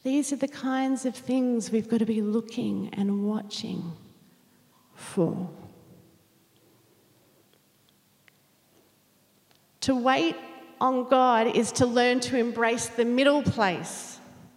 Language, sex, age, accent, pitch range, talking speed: English, female, 40-59, Australian, 220-275 Hz, 105 wpm